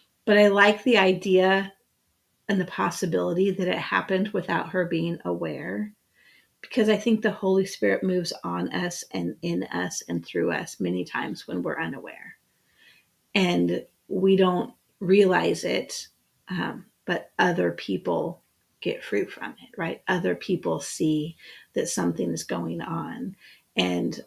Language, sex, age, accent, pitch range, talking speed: English, female, 30-49, American, 155-190 Hz, 145 wpm